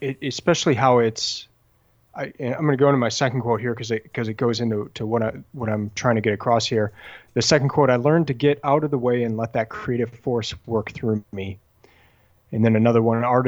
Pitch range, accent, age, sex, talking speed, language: 110-130 Hz, American, 30-49, male, 245 wpm, English